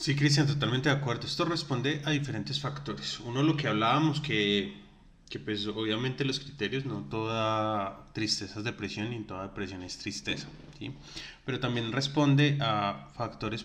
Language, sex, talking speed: Spanish, male, 160 wpm